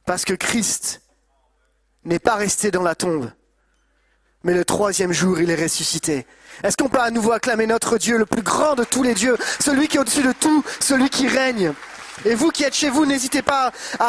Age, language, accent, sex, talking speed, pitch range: 30-49, French, French, male, 210 wpm, 190-240 Hz